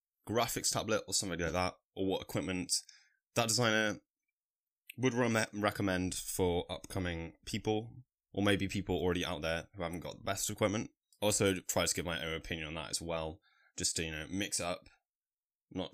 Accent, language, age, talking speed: British, English, 10-29, 175 wpm